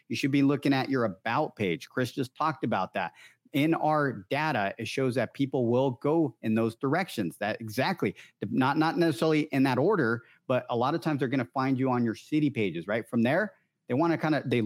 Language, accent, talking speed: English, American, 230 wpm